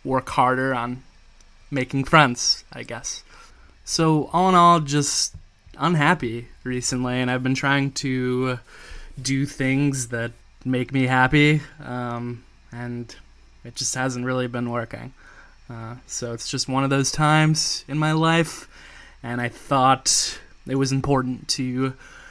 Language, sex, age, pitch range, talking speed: English, male, 20-39, 120-145 Hz, 135 wpm